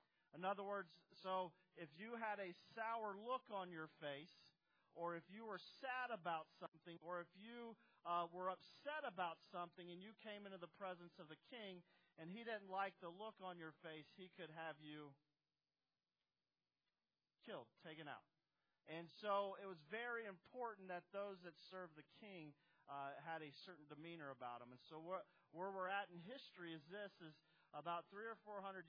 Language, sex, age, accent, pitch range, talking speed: English, male, 40-59, American, 155-185 Hz, 180 wpm